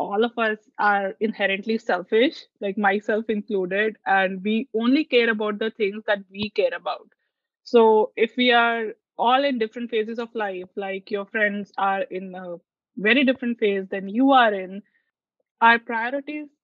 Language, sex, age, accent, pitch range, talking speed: English, female, 20-39, Indian, 205-245 Hz, 160 wpm